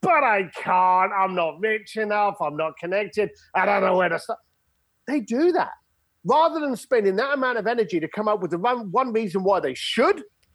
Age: 40-59